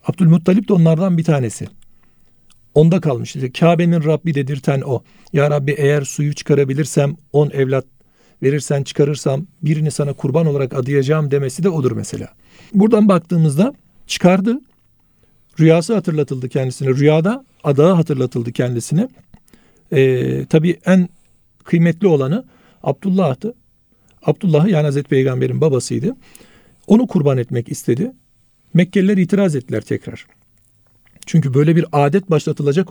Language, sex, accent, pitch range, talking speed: Turkish, male, native, 135-180 Hz, 115 wpm